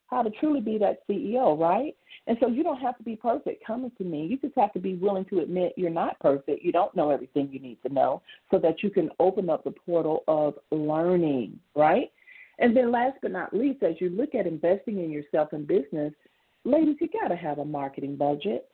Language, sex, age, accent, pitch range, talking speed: English, female, 40-59, American, 165-240 Hz, 225 wpm